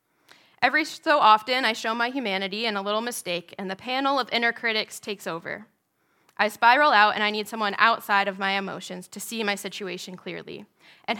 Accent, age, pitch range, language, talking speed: American, 10-29, 195-240 Hz, English, 195 wpm